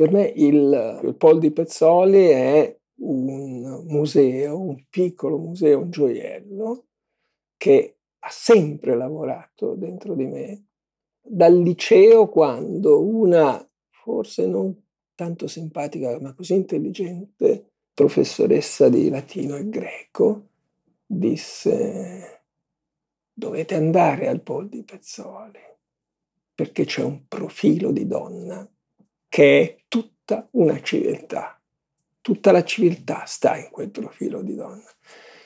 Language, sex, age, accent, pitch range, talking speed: Italian, male, 50-69, native, 145-210 Hz, 105 wpm